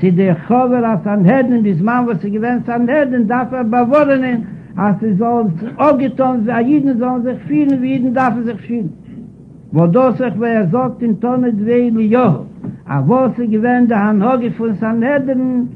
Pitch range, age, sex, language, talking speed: 210-255 Hz, 60-79, male, Hebrew, 120 wpm